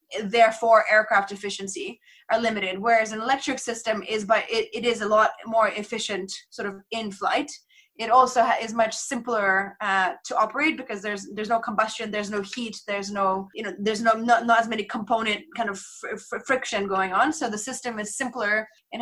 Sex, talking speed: female, 200 wpm